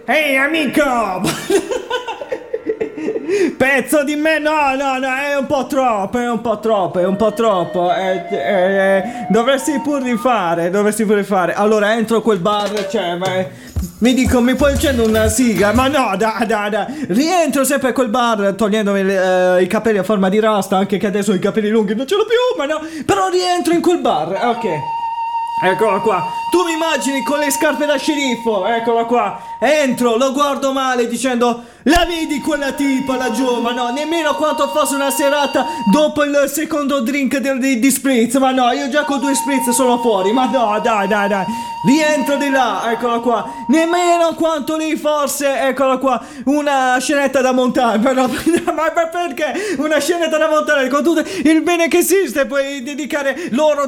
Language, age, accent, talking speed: English, 20-39, Italian, 185 wpm